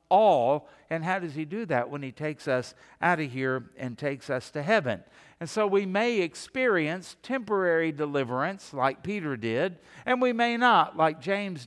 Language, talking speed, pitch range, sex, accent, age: English, 180 wpm, 140-185 Hz, male, American, 60-79